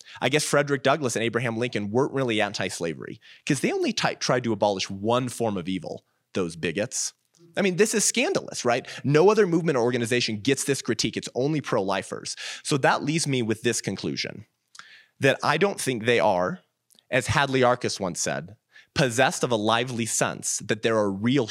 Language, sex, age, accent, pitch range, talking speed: English, male, 30-49, American, 115-150 Hz, 185 wpm